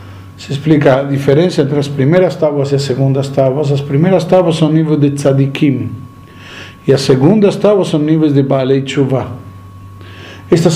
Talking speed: 165 wpm